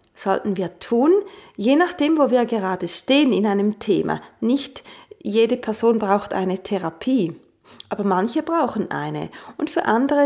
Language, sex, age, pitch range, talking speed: German, female, 30-49, 195-255 Hz, 145 wpm